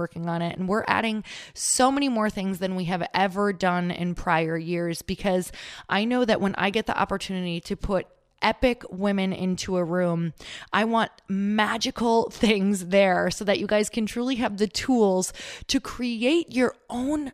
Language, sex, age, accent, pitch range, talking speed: English, female, 20-39, American, 165-210 Hz, 180 wpm